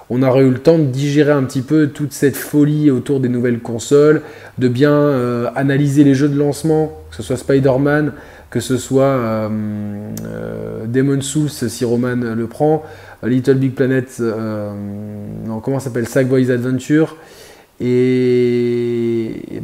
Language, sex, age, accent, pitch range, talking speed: French, male, 20-39, French, 115-140 Hz, 160 wpm